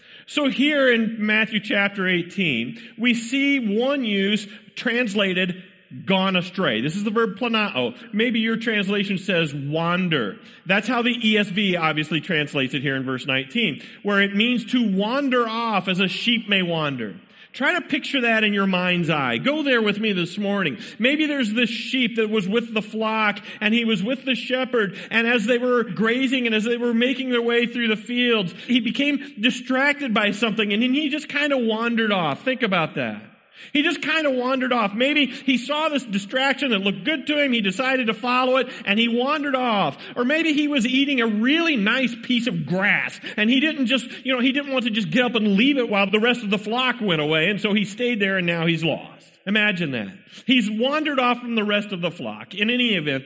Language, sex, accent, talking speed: English, male, American, 210 wpm